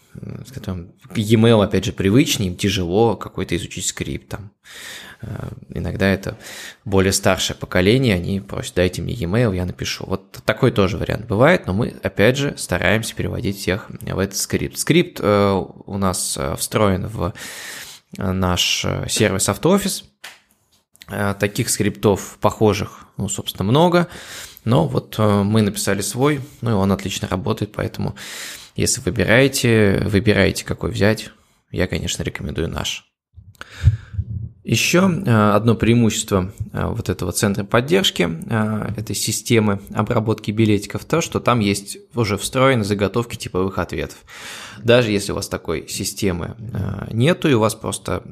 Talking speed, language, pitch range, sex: 130 wpm, Russian, 95-115 Hz, male